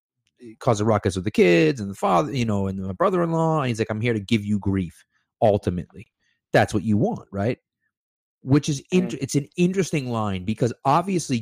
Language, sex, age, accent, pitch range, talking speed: English, male, 30-49, American, 100-125 Hz, 200 wpm